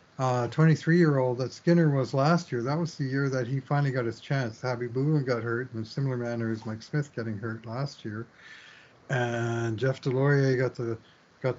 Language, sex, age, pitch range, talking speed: English, male, 60-79, 115-135 Hz, 195 wpm